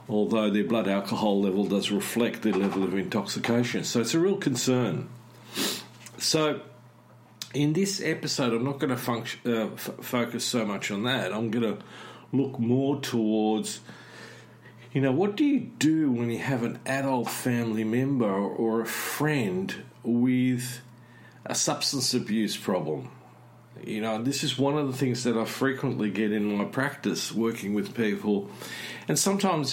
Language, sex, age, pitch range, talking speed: English, male, 50-69, 110-135 Hz, 155 wpm